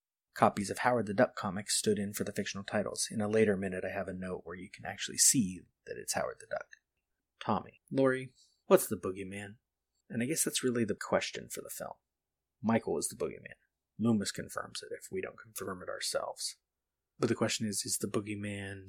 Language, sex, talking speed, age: English, male, 205 wpm, 30-49